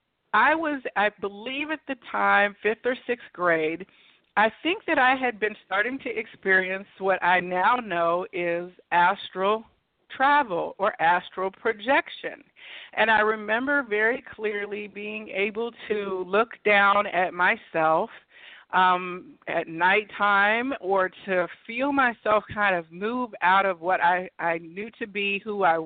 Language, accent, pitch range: English, American, 180-225 Hz